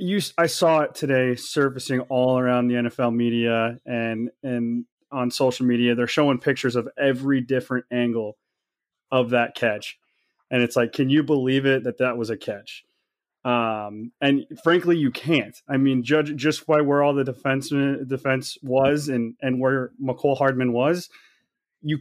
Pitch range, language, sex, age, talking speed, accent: 120-145 Hz, English, male, 30-49, 165 wpm, American